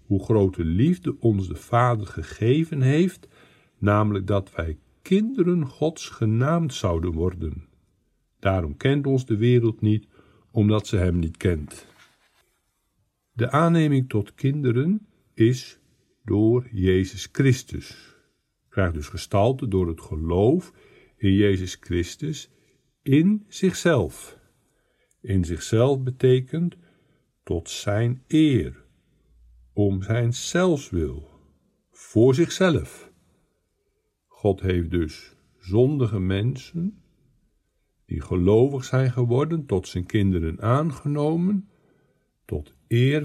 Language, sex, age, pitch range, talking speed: Dutch, male, 60-79, 90-135 Hz, 100 wpm